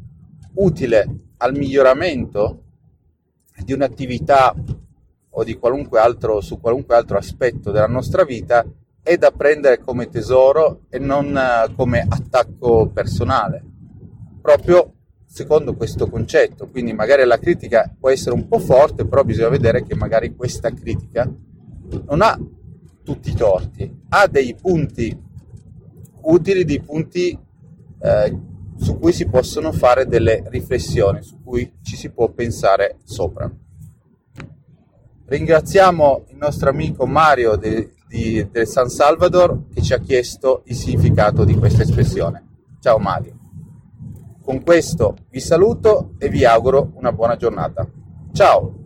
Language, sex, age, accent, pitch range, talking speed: Italian, male, 30-49, native, 115-145 Hz, 125 wpm